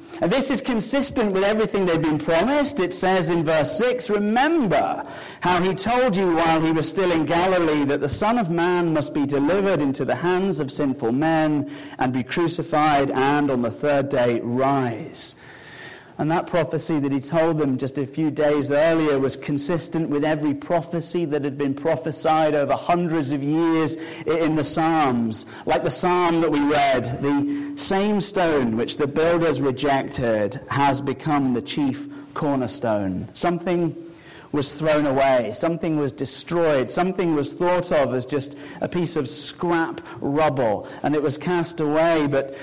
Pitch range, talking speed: 140-175 Hz, 165 wpm